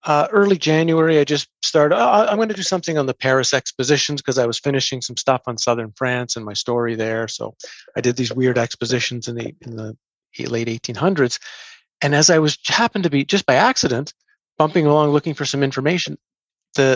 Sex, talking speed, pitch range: male, 205 wpm, 125-155 Hz